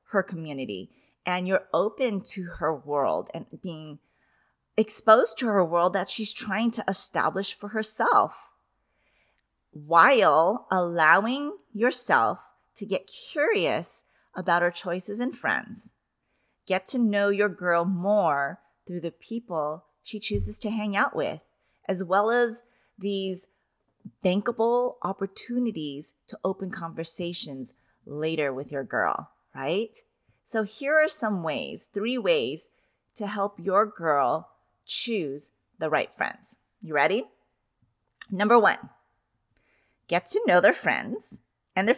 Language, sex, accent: English, female, American